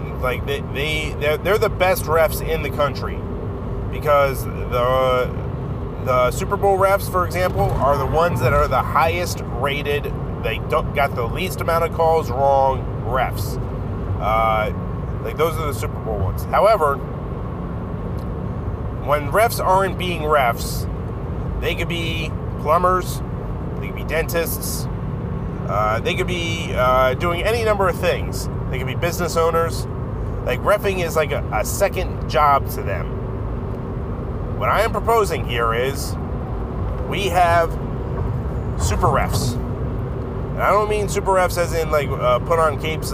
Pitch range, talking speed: 115-145 Hz, 150 wpm